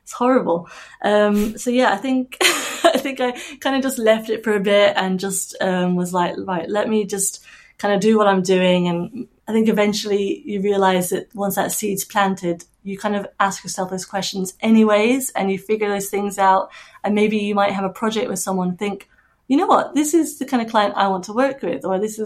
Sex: female